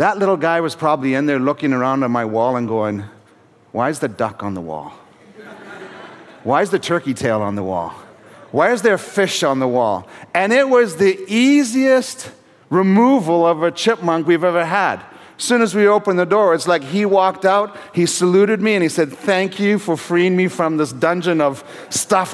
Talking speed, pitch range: 205 wpm, 135-190 Hz